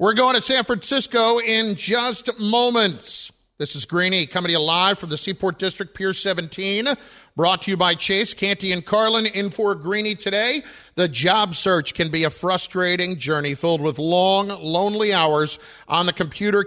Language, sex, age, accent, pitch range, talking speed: English, male, 50-69, American, 165-210 Hz, 175 wpm